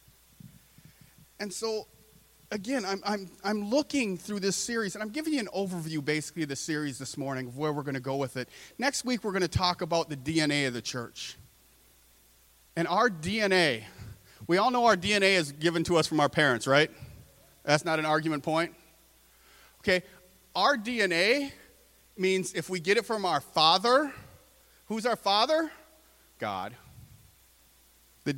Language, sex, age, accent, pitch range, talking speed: English, male, 40-59, American, 115-185 Hz, 165 wpm